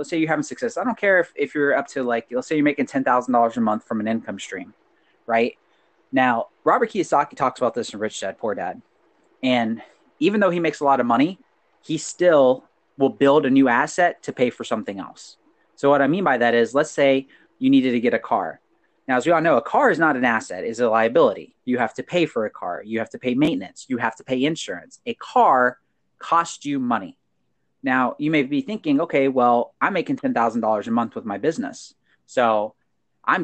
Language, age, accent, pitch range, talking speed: English, 30-49, American, 125-180 Hz, 225 wpm